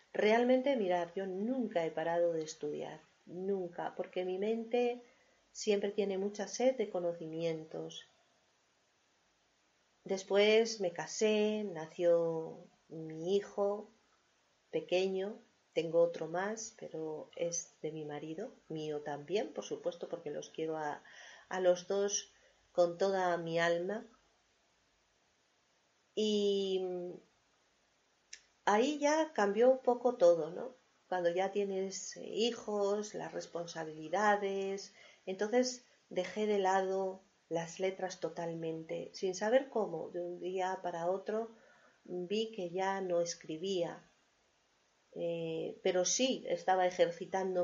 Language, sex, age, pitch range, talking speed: Spanish, female, 40-59, 170-205 Hz, 110 wpm